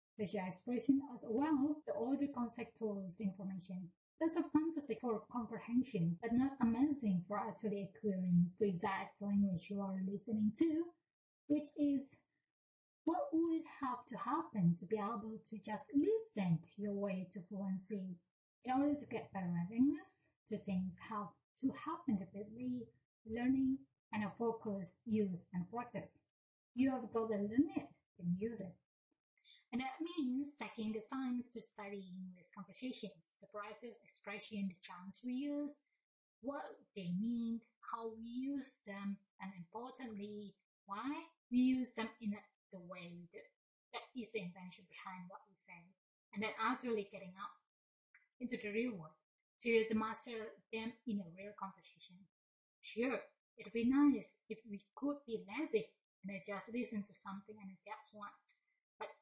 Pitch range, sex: 200-255 Hz, female